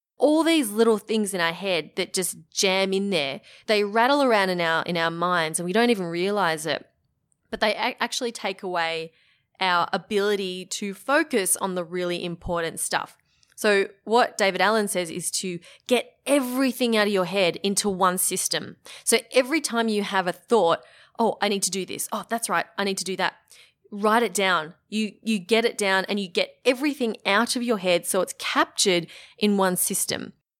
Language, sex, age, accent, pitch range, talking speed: English, female, 20-39, Australian, 185-230 Hz, 190 wpm